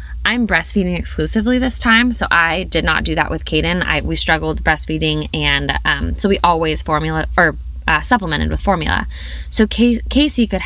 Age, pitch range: 10-29, 145-195 Hz